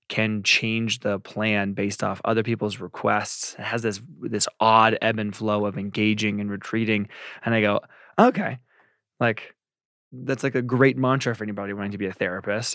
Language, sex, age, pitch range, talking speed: English, male, 20-39, 100-120 Hz, 180 wpm